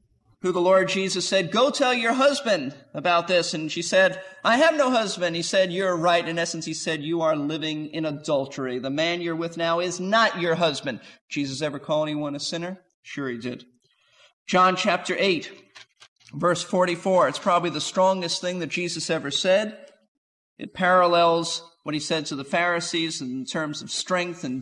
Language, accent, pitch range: English, American, 165-195 Hz